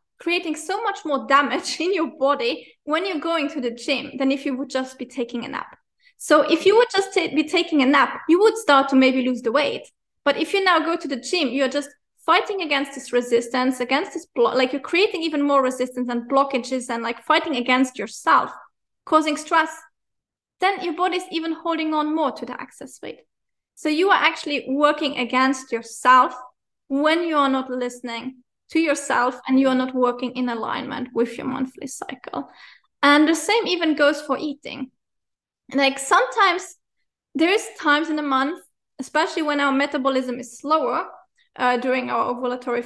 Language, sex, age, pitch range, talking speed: English, female, 20-39, 260-330 Hz, 185 wpm